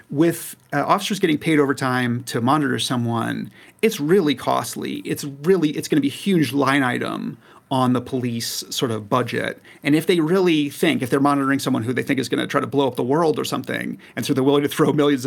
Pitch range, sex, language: 125-145 Hz, male, English